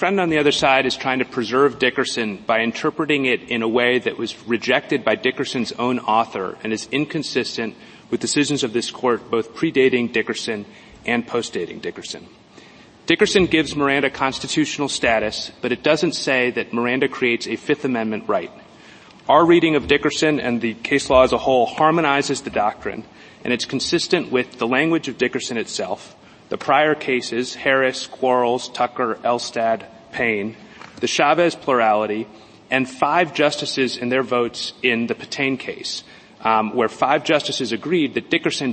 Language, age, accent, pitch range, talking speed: English, 30-49, American, 115-145 Hz, 165 wpm